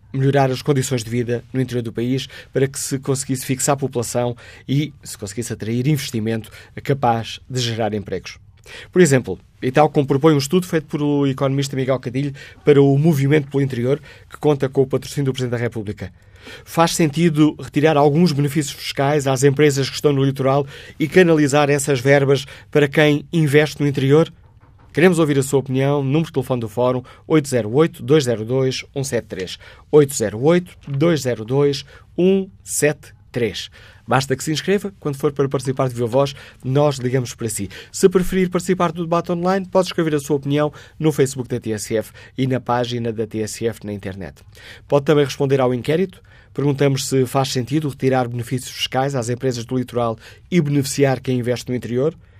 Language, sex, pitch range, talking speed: Portuguese, male, 120-150 Hz, 165 wpm